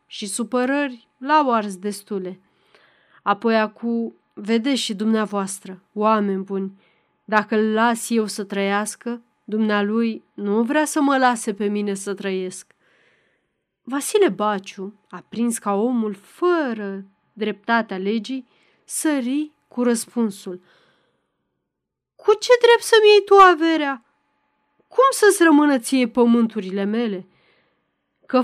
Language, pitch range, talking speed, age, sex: Romanian, 200-275 Hz, 115 wpm, 30-49, female